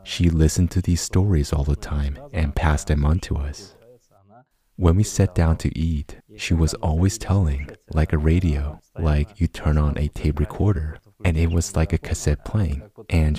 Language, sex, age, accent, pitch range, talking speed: English, male, 30-49, American, 80-105 Hz, 190 wpm